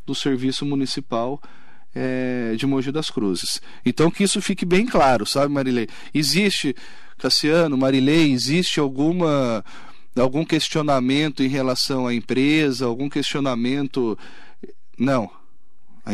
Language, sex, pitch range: Portuguese, male, 125-165 Hz